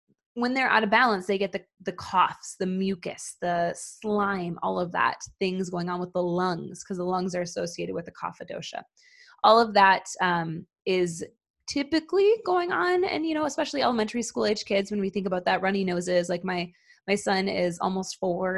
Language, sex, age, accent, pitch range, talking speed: English, female, 20-39, American, 185-235 Hz, 200 wpm